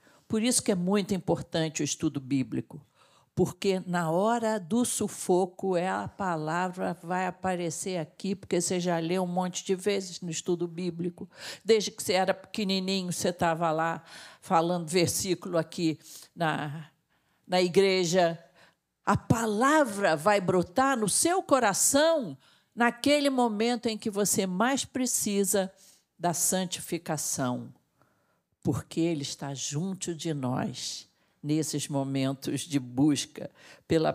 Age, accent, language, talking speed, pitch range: 50-69, Brazilian, Portuguese, 125 wpm, 160-215 Hz